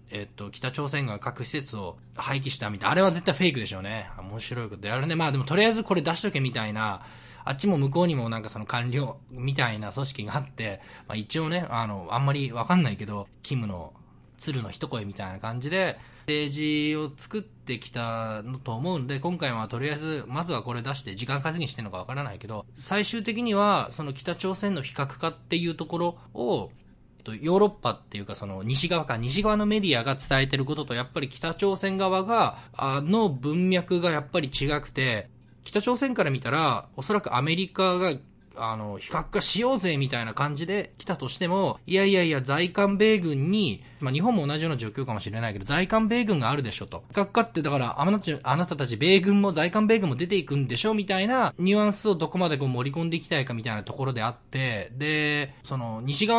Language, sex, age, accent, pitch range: Japanese, male, 20-39, native, 120-180 Hz